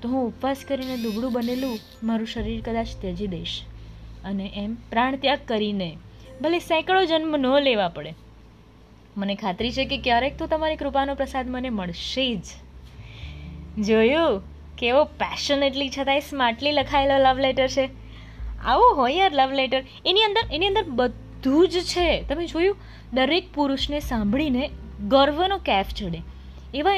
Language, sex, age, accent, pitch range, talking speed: Gujarati, female, 20-39, native, 210-320 Hz, 140 wpm